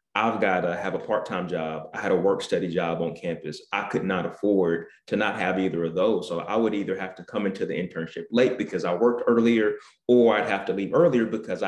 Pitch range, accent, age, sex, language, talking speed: 95-115 Hz, American, 30-49, male, English, 245 wpm